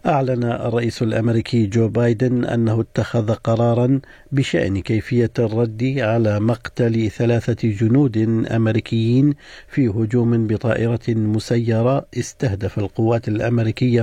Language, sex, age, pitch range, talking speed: Arabic, male, 50-69, 110-135 Hz, 100 wpm